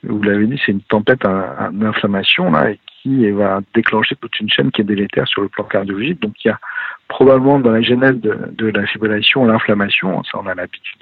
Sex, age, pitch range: male, 50-69, 100-120 Hz